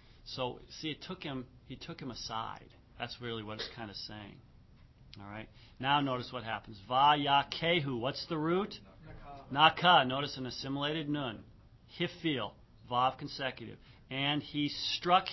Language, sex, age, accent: English, male, 40-59, American